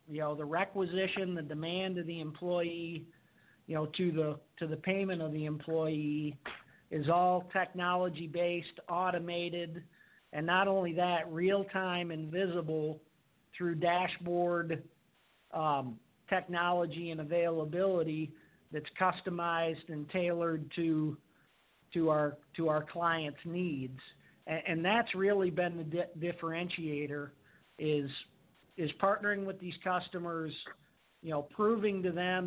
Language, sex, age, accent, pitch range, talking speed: English, male, 50-69, American, 160-180 Hz, 125 wpm